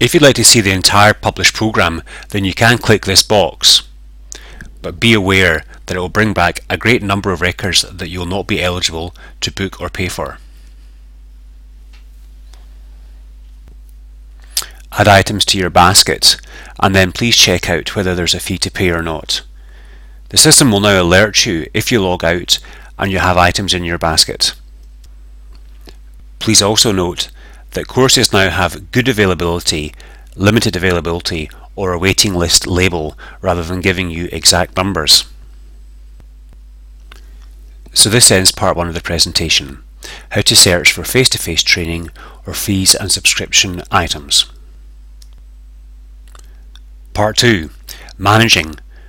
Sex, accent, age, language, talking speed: male, British, 30-49, English, 145 wpm